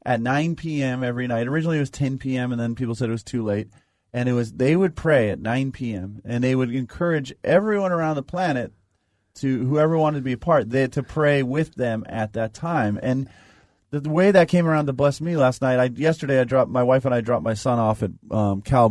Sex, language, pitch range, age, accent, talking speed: male, English, 115-140 Hz, 30-49, American, 240 wpm